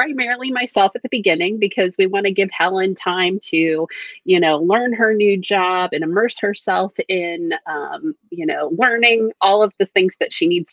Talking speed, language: 190 wpm, English